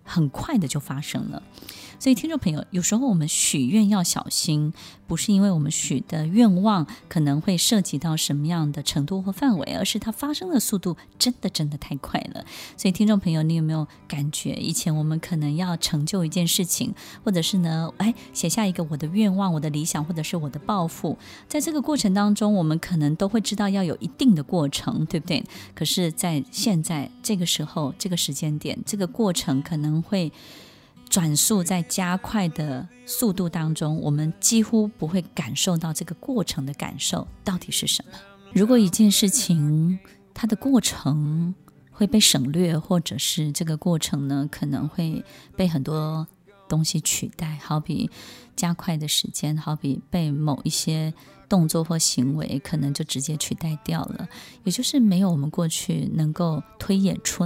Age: 20-39